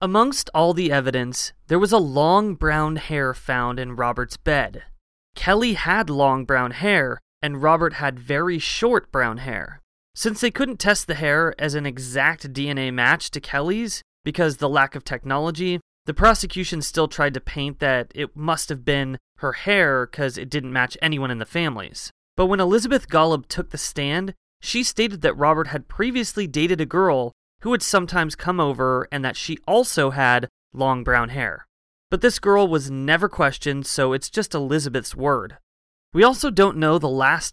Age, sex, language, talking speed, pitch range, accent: 20-39, male, English, 180 wpm, 135-180 Hz, American